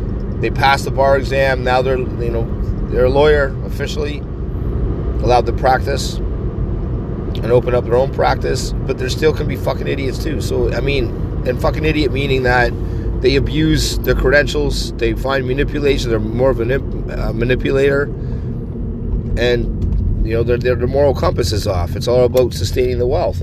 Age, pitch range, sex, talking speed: 30-49, 90-120 Hz, male, 170 wpm